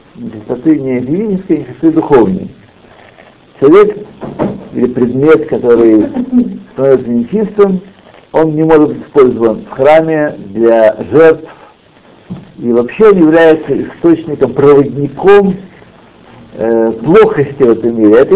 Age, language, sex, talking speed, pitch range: 60-79, Russian, male, 105 wpm, 115-165 Hz